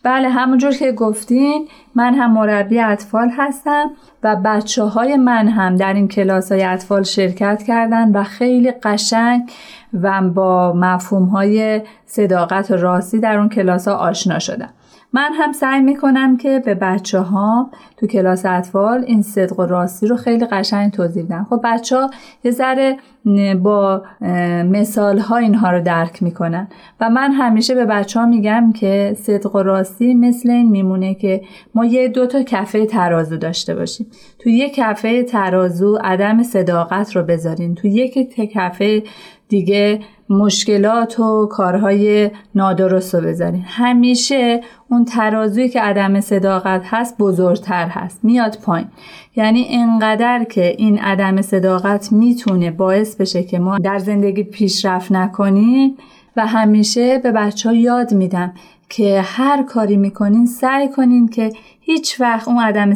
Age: 30-49